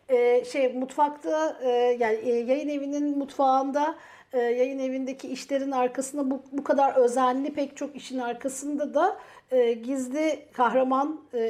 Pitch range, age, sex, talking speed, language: 245-290 Hz, 50-69, female, 140 wpm, Turkish